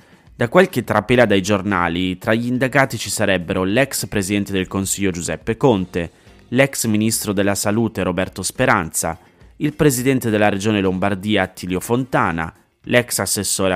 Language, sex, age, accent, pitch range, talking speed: Italian, male, 30-49, native, 95-120 Hz, 135 wpm